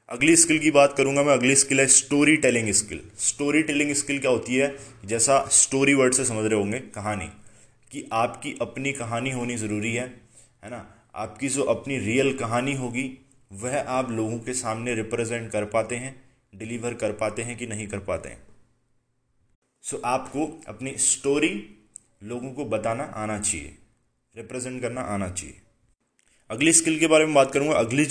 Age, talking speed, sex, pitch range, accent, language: 20-39, 170 wpm, male, 110-130 Hz, native, Hindi